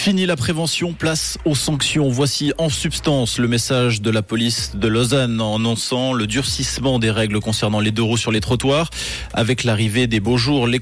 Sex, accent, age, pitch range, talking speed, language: male, French, 20-39, 110-135 Hz, 195 wpm, French